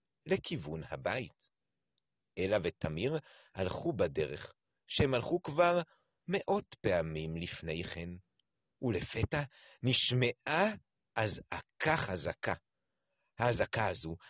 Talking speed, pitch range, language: 75 wpm, 95-150 Hz, Hebrew